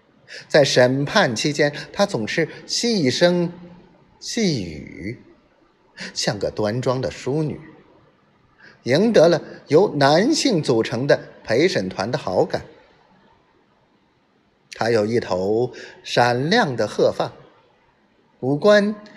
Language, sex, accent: Chinese, male, native